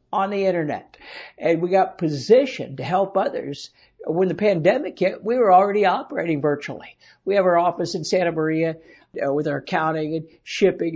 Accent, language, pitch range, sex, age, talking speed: American, English, 155-195 Hz, male, 60-79, 175 wpm